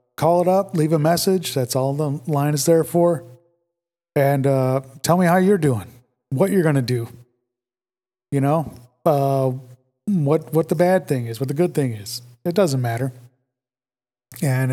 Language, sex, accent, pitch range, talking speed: English, male, American, 125-160 Hz, 175 wpm